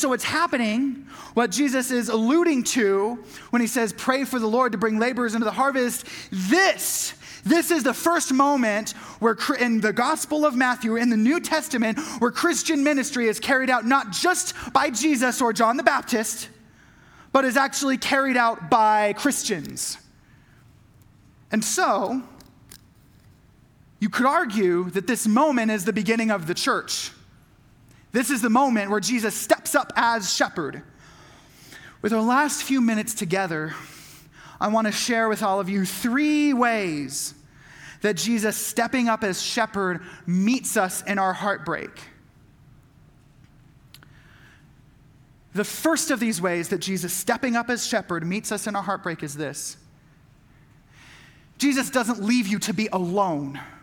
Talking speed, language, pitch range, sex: 150 wpm, English, 175-255 Hz, male